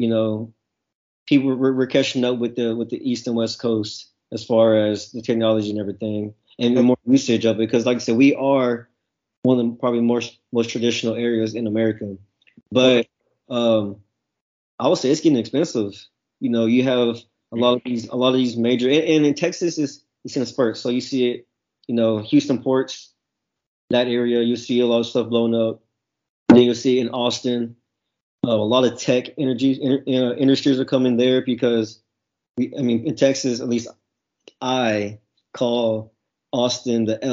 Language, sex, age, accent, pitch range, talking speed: English, male, 20-39, American, 115-125 Hz, 185 wpm